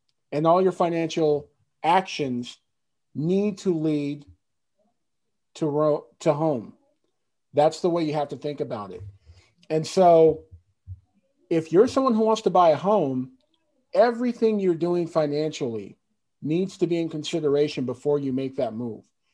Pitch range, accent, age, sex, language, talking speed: 140-185 Hz, American, 40-59, male, English, 140 wpm